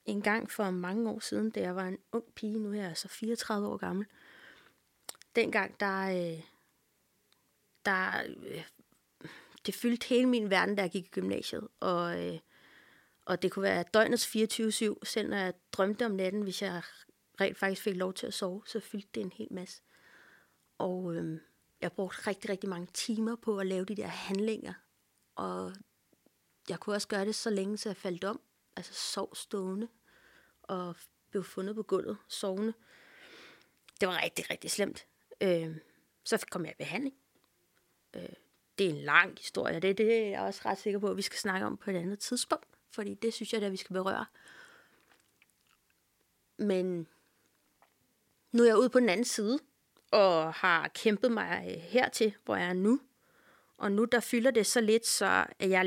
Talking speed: 180 wpm